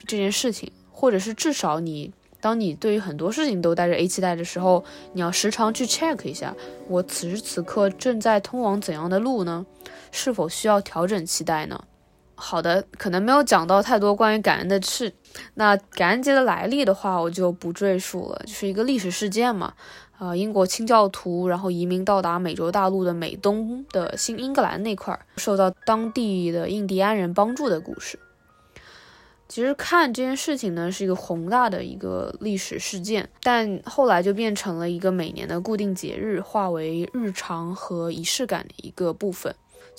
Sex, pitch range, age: female, 175-220 Hz, 20-39